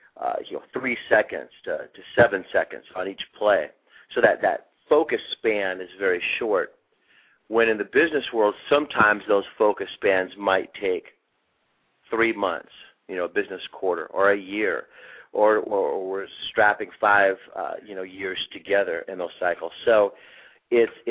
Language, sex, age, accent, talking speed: English, male, 40-59, American, 160 wpm